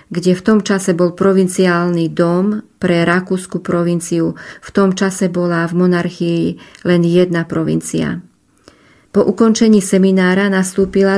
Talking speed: 125 wpm